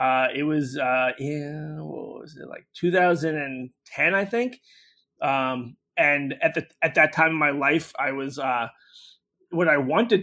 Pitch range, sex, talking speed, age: 130-150 Hz, male, 165 wpm, 30-49